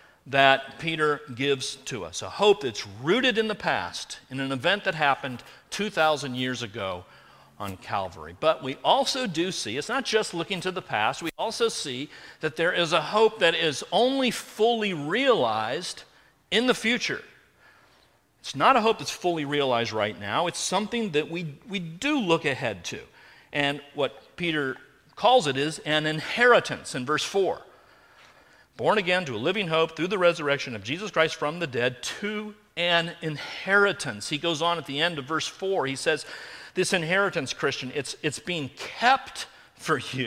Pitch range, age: 140-205 Hz, 40-59